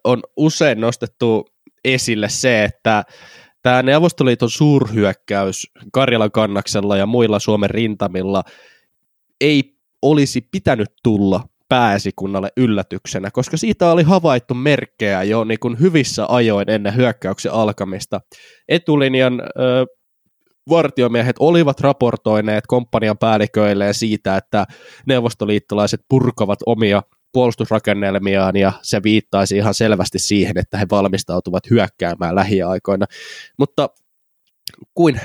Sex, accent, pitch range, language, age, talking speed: male, native, 100-130 Hz, Finnish, 20-39, 100 wpm